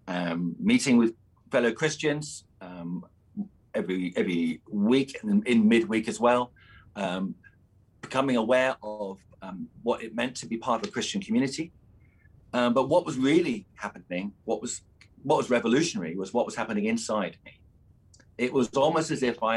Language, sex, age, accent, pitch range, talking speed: English, male, 40-59, British, 100-155 Hz, 160 wpm